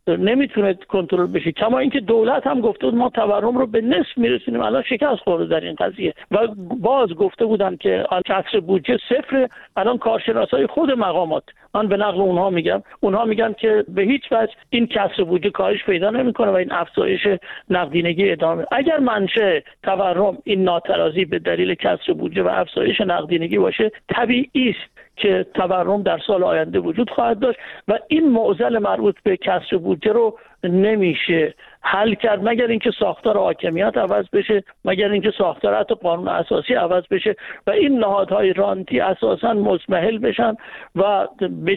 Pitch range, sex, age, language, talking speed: 185-235 Hz, male, 50-69, Persian, 160 wpm